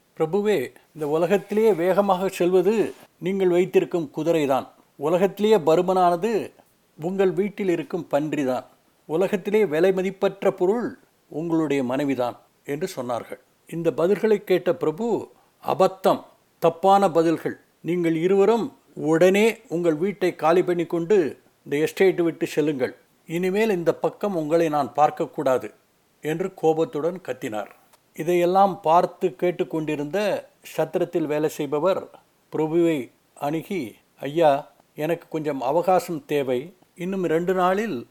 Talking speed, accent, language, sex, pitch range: 105 wpm, native, Tamil, male, 155-190 Hz